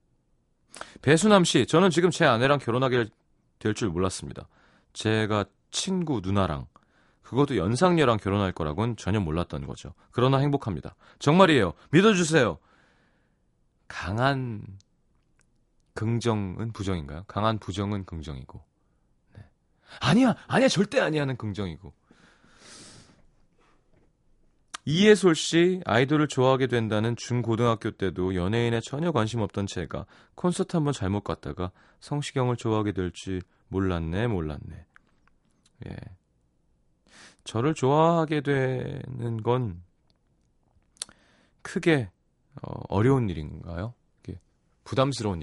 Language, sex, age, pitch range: Korean, male, 30-49, 95-140 Hz